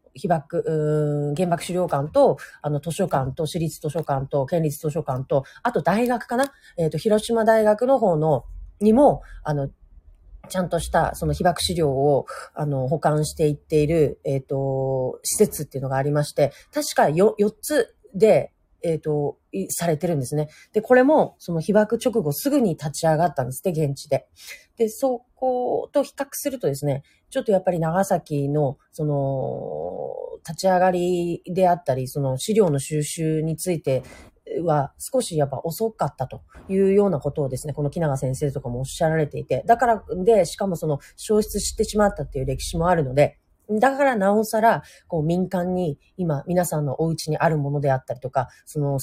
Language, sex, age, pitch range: Japanese, female, 40-59, 145-200 Hz